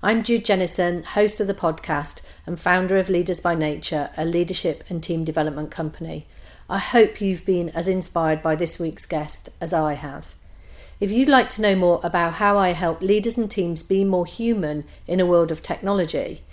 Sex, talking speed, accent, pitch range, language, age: female, 190 wpm, British, 160-205 Hz, English, 40-59